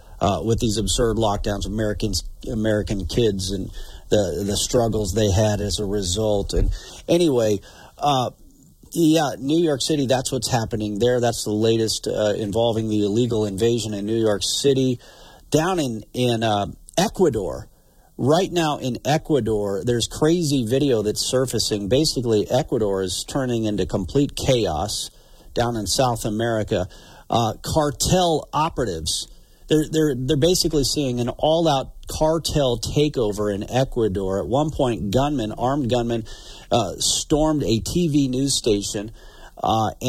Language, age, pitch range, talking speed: English, 50-69, 105-135 Hz, 140 wpm